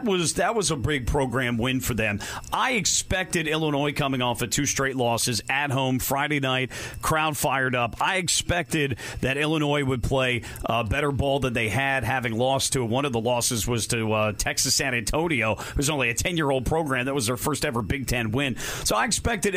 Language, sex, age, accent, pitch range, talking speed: English, male, 40-59, American, 125-155 Hz, 205 wpm